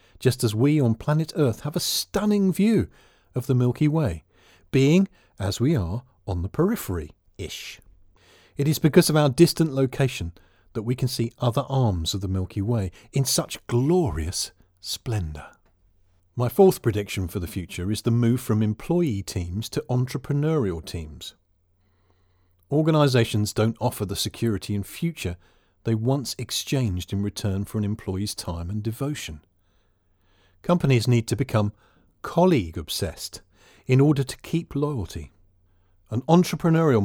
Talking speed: 140 wpm